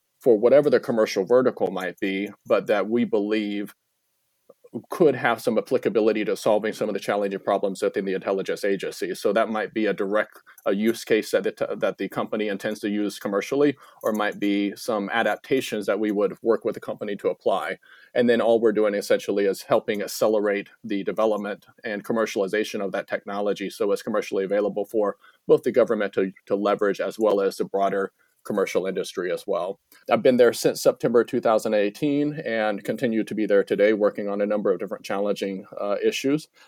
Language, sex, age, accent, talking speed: English, male, 40-59, American, 185 wpm